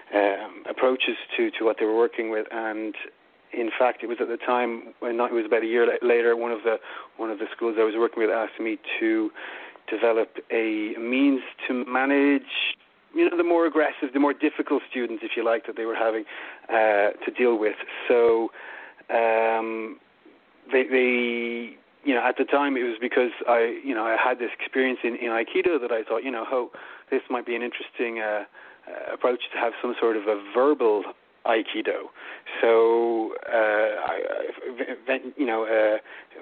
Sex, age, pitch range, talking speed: male, 30-49, 115-135 Hz, 190 wpm